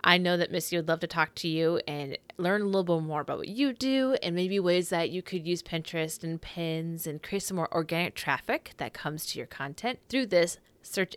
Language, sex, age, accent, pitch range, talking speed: English, female, 20-39, American, 155-190 Hz, 235 wpm